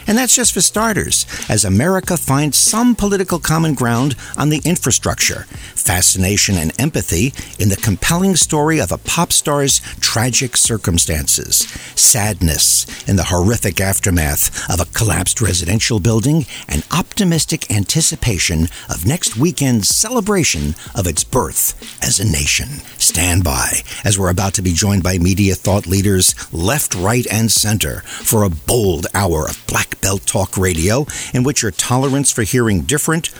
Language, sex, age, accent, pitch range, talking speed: English, male, 60-79, American, 95-140 Hz, 150 wpm